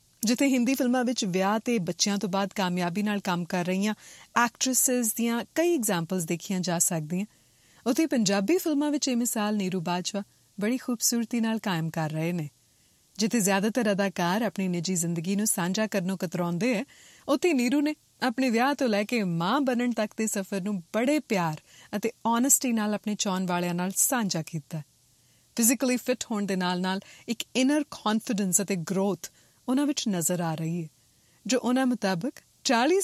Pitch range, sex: 180-245 Hz, female